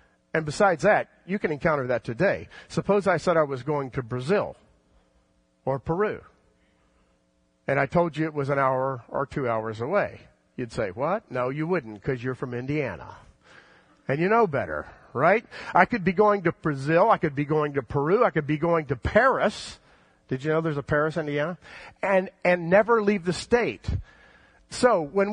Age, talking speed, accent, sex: 50-69, 185 wpm, American, male